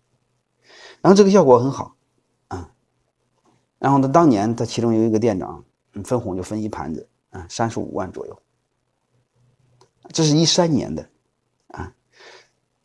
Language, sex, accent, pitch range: Chinese, male, native, 105-130 Hz